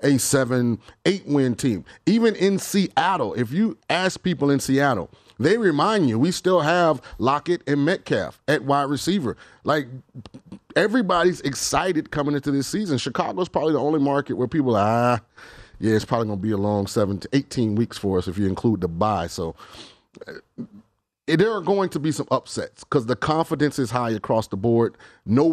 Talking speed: 180 wpm